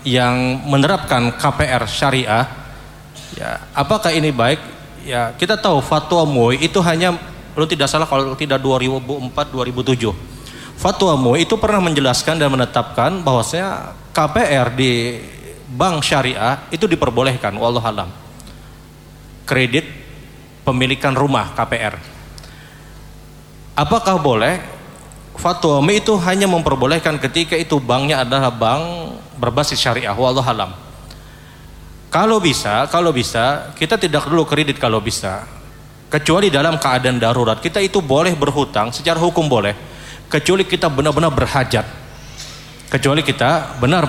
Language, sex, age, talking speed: Indonesian, male, 30-49, 110 wpm